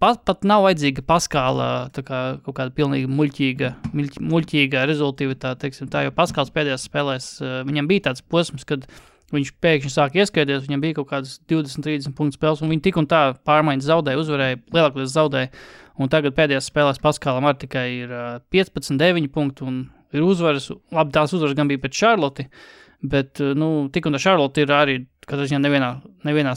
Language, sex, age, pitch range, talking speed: English, male, 20-39, 135-155 Hz, 170 wpm